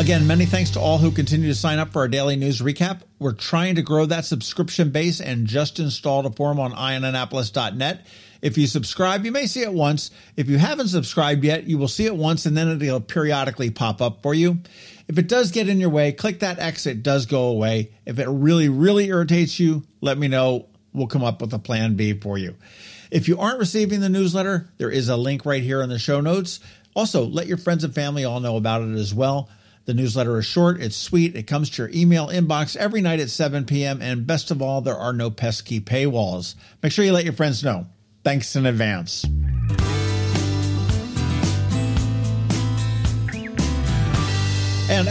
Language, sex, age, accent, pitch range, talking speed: English, male, 50-69, American, 115-165 Hz, 205 wpm